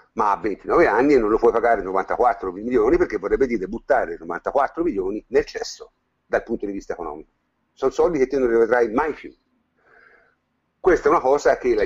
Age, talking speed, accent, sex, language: 50-69, 190 wpm, native, male, Italian